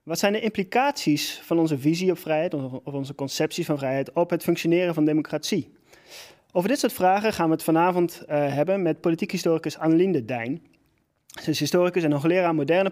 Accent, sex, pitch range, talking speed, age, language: Dutch, male, 145-180 Hz, 190 wpm, 30-49, Dutch